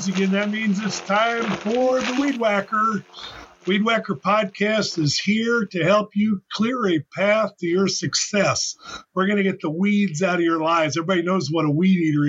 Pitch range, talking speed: 180-215 Hz, 190 wpm